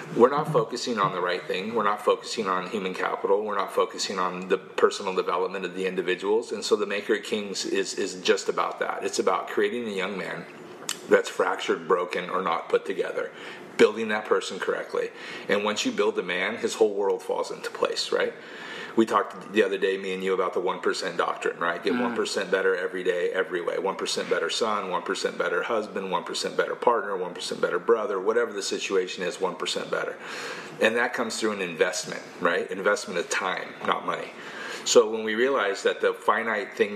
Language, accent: English, American